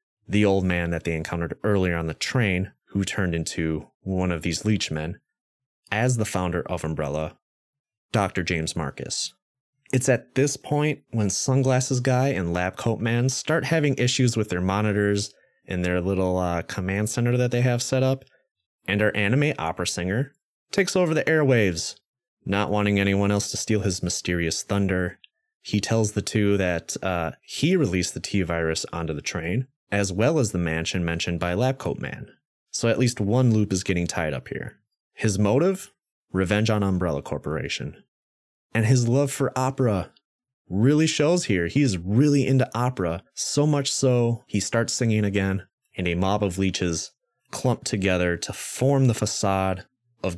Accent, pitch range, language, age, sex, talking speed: American, 90-130 Hz, English, 30-49, male, 170 wpm